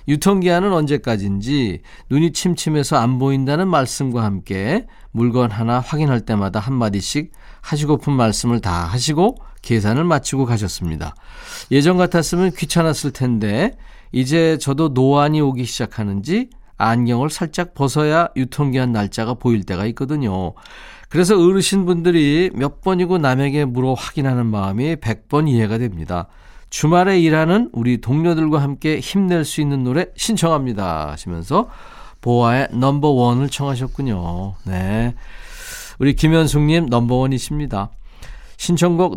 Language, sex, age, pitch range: Korean, male, 40-59, 115-160 Hz